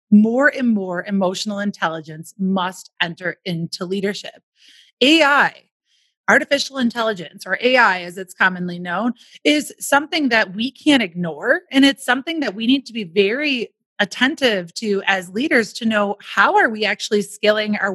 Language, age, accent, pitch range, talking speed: English, 30-49, American, 205-275 Hz, 150 wpm